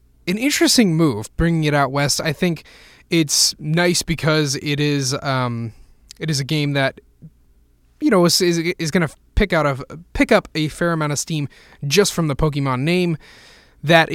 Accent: American